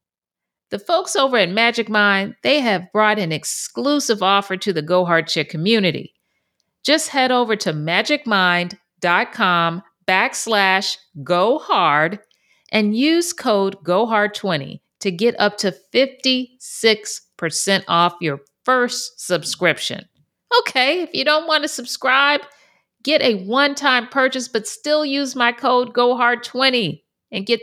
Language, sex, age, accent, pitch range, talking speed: English, female, 50-69, American, 190-270 Hz, 125 wpm